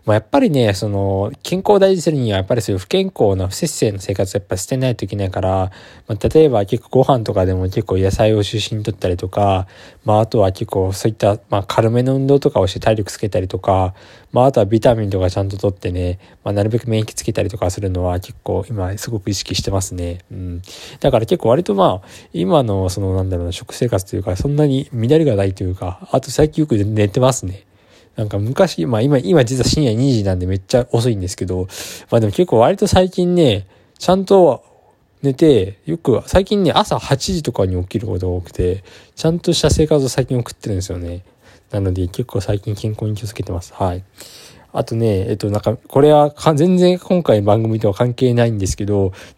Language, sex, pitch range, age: Japanese, male, 95-130 Hz, 20-39